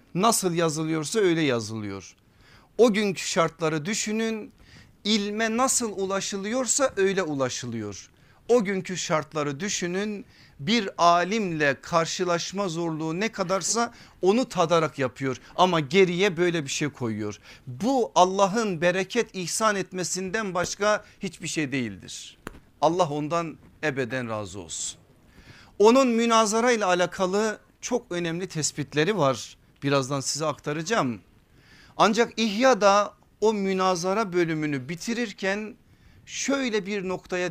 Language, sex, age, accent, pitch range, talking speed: Turkish, male, 50-69, native, 140-205 Hz, 105 wpm